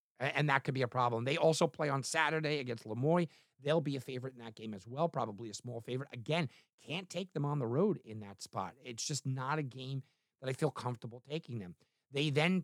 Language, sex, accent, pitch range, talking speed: English, male, American, 120-165 Hz, 235 wpm